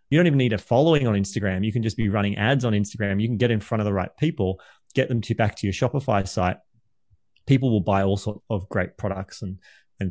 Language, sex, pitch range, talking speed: English, male, 105-135 Hz, 255 wpm